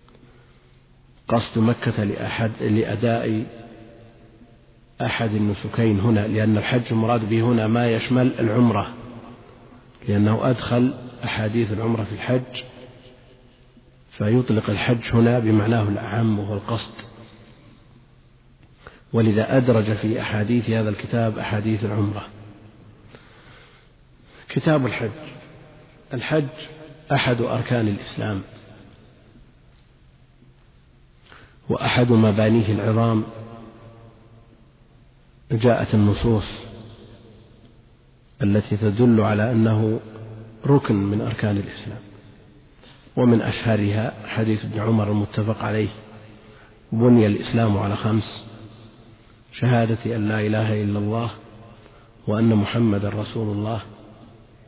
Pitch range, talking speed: 110-120 Hz, 80 wpm